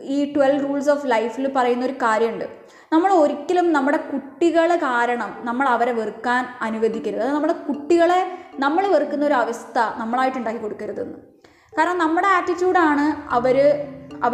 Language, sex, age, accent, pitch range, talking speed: Malayalam, female, 20-39, native, 240-300 Hz, 115 wpm